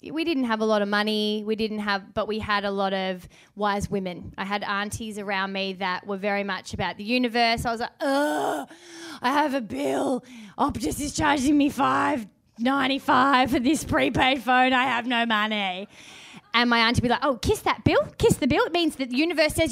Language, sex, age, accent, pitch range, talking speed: English, female, 20-39, Australian, 210-265 Hz, 215 wpm